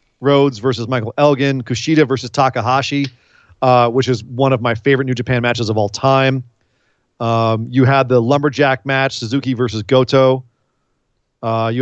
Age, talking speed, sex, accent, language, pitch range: 40-59, 155 wpm, male, American, English, 115-135 Hz